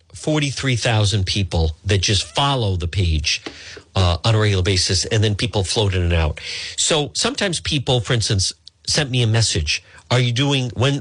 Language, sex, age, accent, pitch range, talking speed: English, male, 50-69, American, 95-155 Hz, 175 wpm